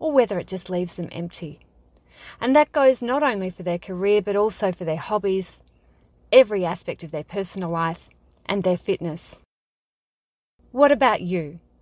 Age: 30-49